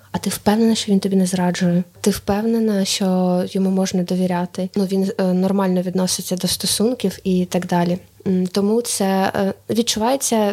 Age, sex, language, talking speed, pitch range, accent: 20-39, female, Ukrainian, 150 wpm, 185-215 Hz, native